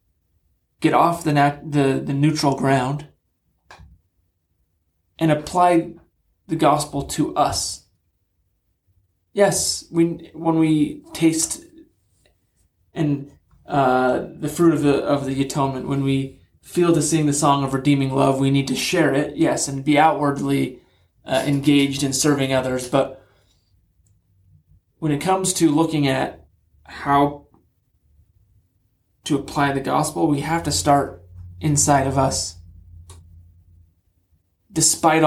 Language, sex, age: English, male, 30-49